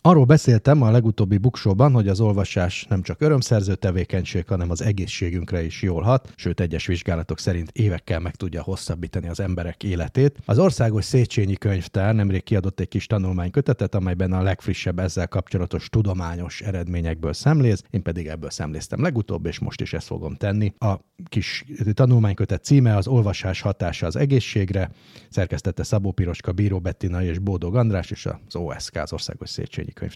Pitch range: 90-110 Hz